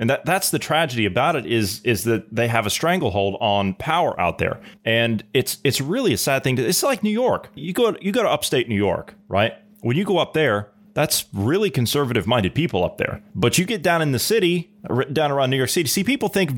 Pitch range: 110-160 Hz